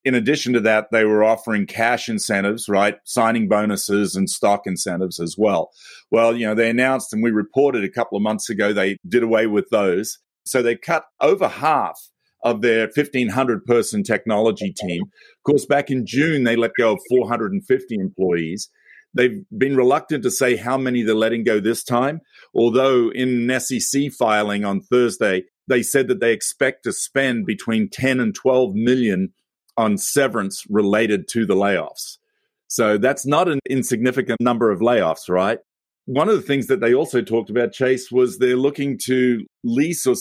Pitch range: 110-135 Hz